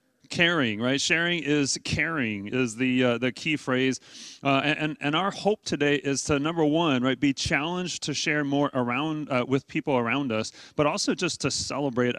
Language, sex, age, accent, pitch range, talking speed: English, male, 30-49, American, 135-170 Hz, 185 wpm